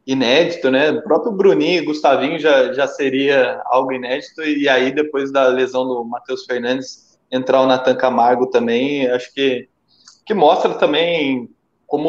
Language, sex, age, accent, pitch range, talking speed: Portuguese, male, 20-39, Brazilian, 125-160 Hz, 155 wpm